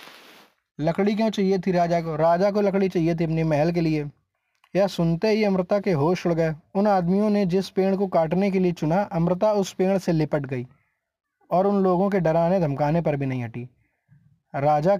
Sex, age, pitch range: male, 20-39, 150-185 Hz